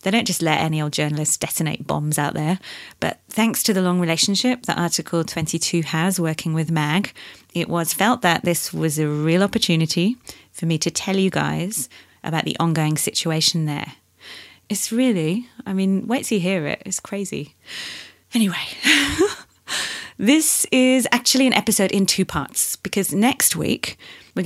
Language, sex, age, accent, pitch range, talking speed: English, female, 30-49, British, 160-205 Hz, 165 wpm